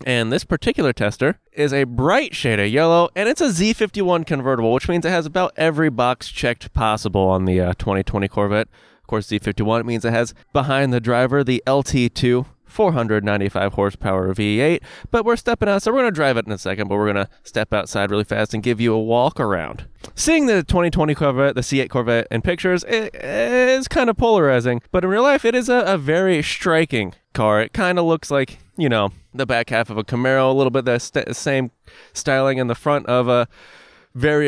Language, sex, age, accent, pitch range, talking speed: English, male, 20-39, American, 110-160 Hz, 215 wpm